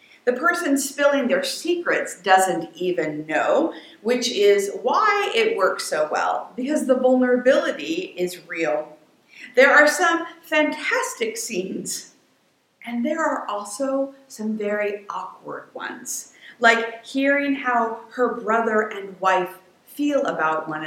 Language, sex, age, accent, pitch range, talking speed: English, female, 50-69, American, 185-285 Hz, 125 wpm